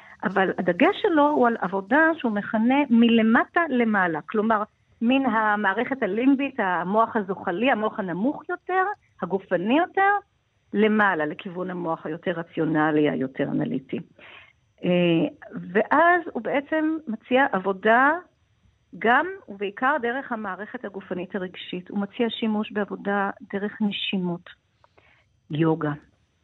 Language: Hebrew